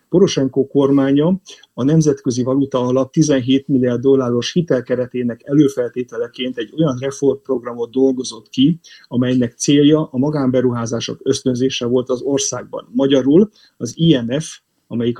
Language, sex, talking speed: Hungarian, male, 110 wpm